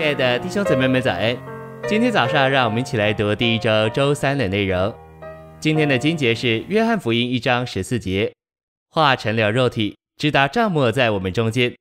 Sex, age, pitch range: male, 20-39, 105-135 Hz